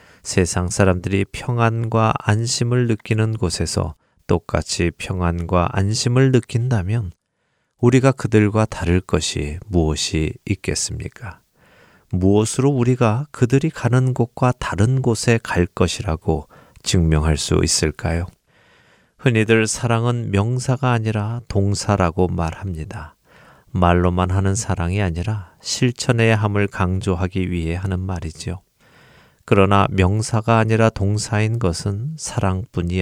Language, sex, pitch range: Korean, male, 90-115 Hz